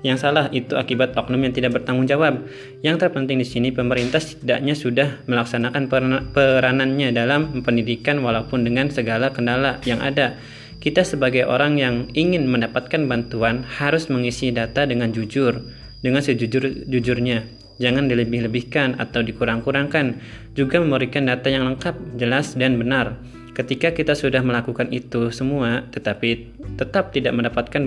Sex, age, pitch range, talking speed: male, 20-39, 115-135 Hz, 135 wpm